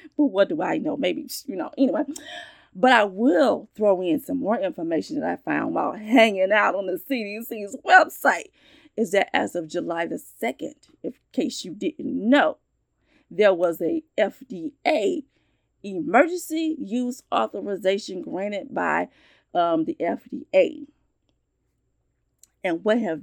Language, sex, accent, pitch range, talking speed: English, female, American, 205-315 Hz, 140 wpm